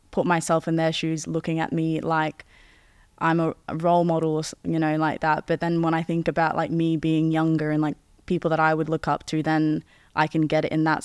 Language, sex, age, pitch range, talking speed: English, female, 10-29, 155-165 Hz, 240 wpm